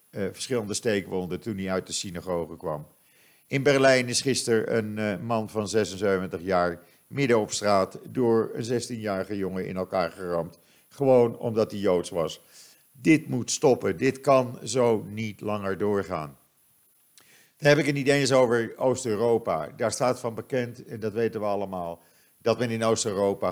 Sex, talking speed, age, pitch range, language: male, 165 wpm, 50-69, 95-125 Hz, Dutch